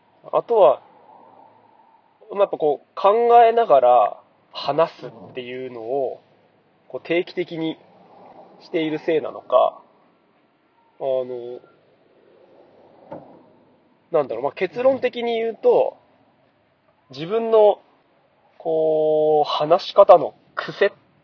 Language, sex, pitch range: Japanese, male, 130-195 Hz